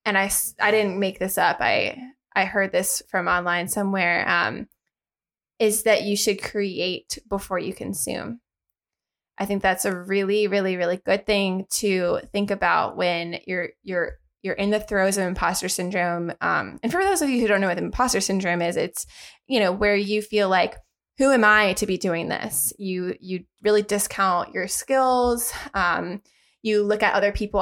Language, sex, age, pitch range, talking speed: English, female, 20-39, 185-225 Hz, 180 wpm